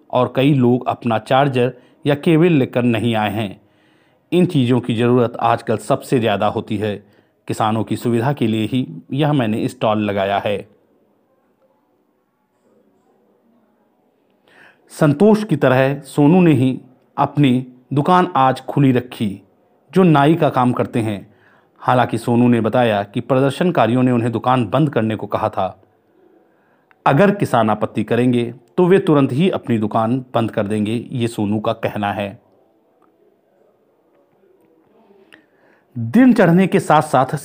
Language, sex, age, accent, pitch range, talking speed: Hindi, male, 40-59, native, 115-145 Hz, 135 wpm